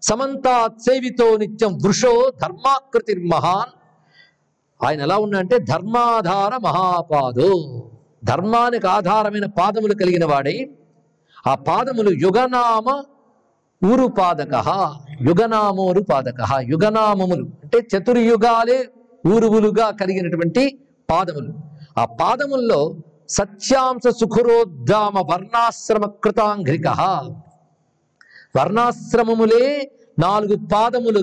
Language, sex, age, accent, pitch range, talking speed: Telugu, male, 50-69, native, 170-230 Hz, 75 wpm